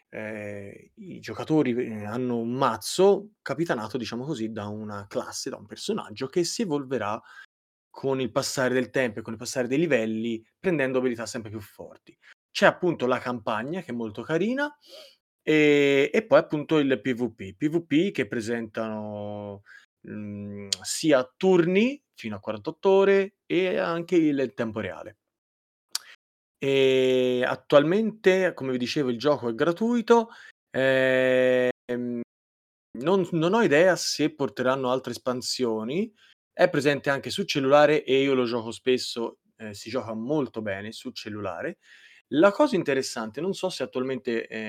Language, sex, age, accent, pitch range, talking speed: Italian, male, 30-49, native, 115-160 Hz, 140 wpm